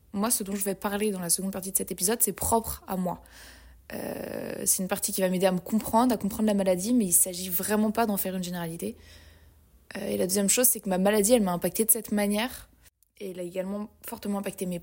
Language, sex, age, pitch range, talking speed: French, female, 20-39, 195-235 Hz, 255 wpm